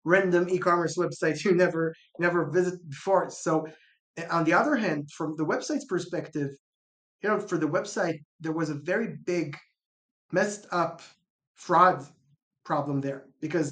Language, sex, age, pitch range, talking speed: English, male, 20-39, 155-185 Hz, 145 wpm